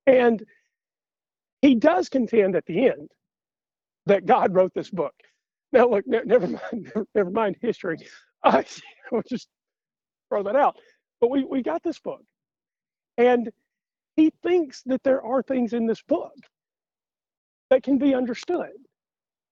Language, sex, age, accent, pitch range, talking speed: English, male, 40-59, American, 195-285 Hz, 145 wpm